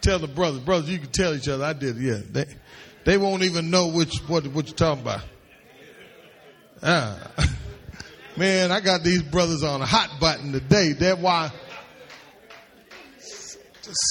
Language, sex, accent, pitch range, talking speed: English, male, American, 130-185 Hz, 160 wpm